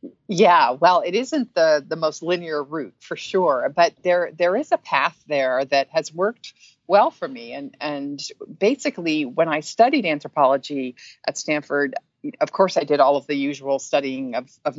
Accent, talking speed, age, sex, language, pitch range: American, 180 wpm, 50-69, female, English, 140-175 Hz